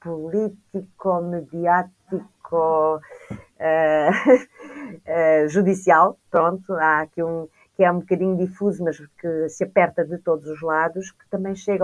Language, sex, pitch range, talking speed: Portuguese, female, 165-215 Hz, 125 wpm